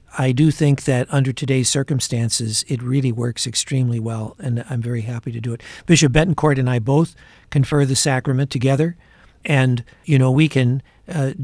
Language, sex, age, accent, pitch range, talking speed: English, male, 60-79, American, 120-145 Hz, 180 wpm